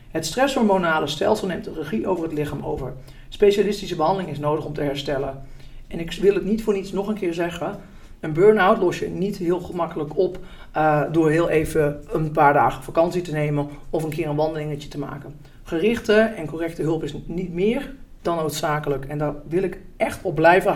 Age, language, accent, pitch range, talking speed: 50-69, Dutch, Dutch, 150-200 Hz, 200 wpm